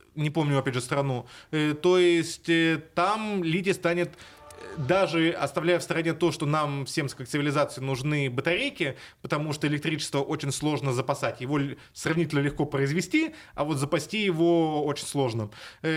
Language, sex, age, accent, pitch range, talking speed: Russian, male, 20-39, native, 140-175 Hz, 145 wpm